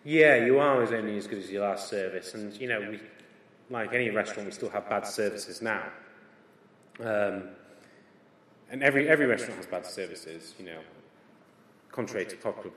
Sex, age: male, 30-49